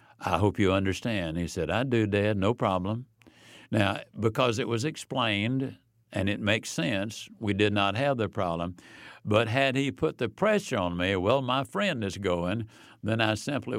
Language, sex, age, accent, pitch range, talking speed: English, male, 60-79, American, 100-125 Hz, 185 wpm